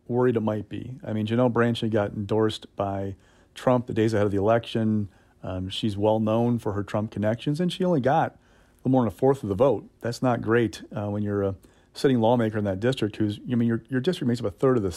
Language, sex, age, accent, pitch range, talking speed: English, male, 40-59, American, 105-125 Hz, 250 wpm